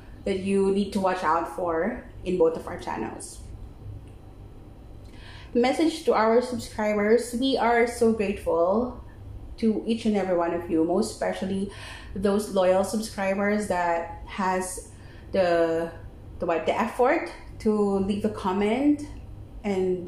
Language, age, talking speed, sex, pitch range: Filipino, 30-49, 130 wpm, female, 175-235 Hz